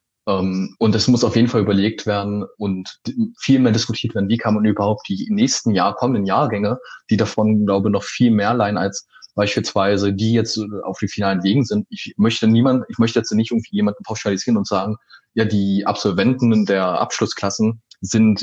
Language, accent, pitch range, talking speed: German, German, 100-115 Hz, 190 wpm